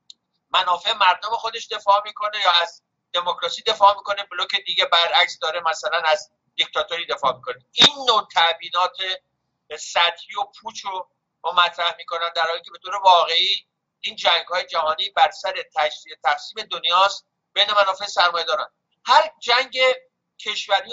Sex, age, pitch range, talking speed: male, 50-69, 170-225 Hz, 140 wpm